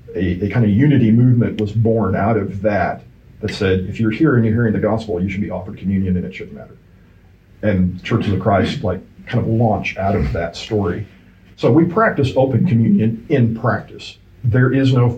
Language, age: English, 40-59